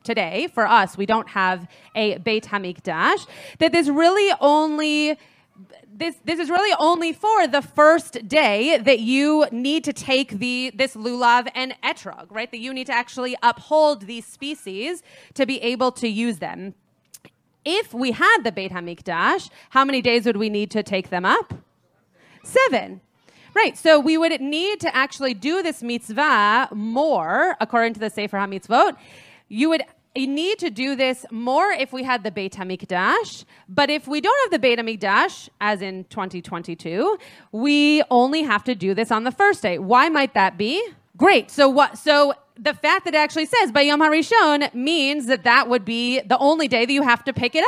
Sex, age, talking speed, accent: female, 30-49, 185 wpm, American